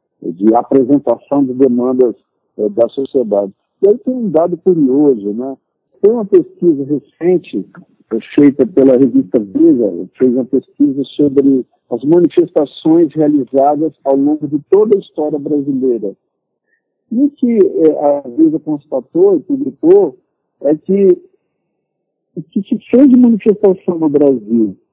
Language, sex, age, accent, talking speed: Portuguese, male, 50-69, Brazilian, 130 wpm